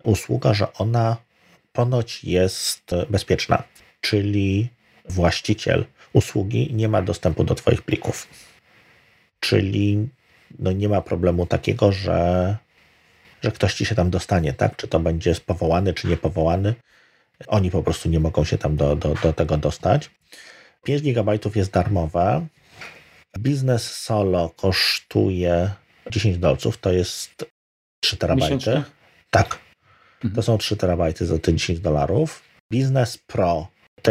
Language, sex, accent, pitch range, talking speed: Polish, male, native, 85-115 Hz, 125 wpm